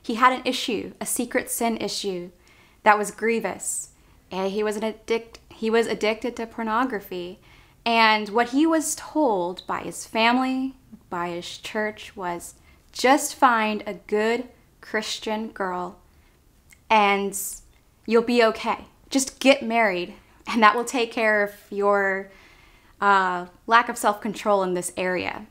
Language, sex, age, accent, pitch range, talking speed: English, female, 20-39, American, 195-240 Hz, 140 wpm